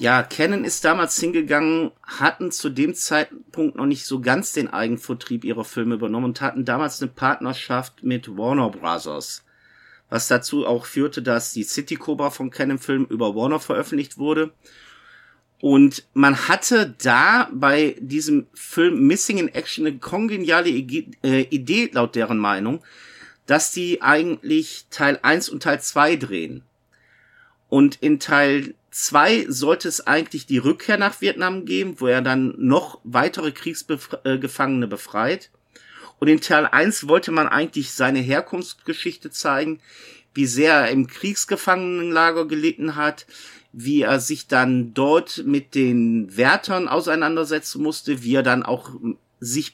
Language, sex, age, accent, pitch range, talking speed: German, male, 50-69, German, 130-175 Hz, 140 wpm